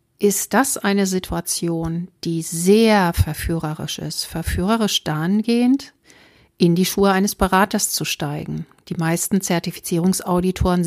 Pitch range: 165-205 Hz